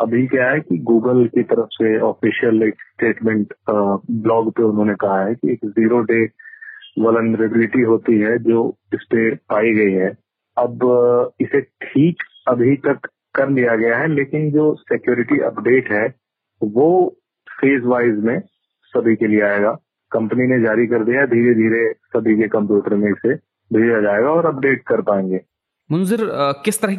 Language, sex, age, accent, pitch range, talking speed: Hindi, male, 30-49, native, 110-135 Hz, 160 wpm